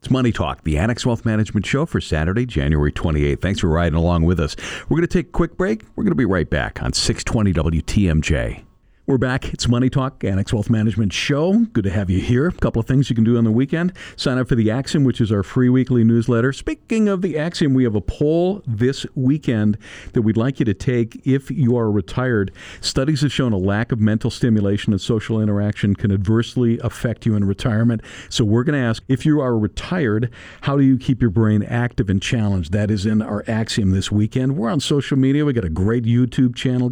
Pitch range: 105-130 Hz